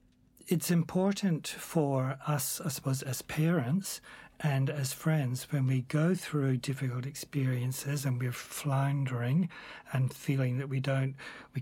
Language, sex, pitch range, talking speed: English, male, 130-155 Hz, 135 wpm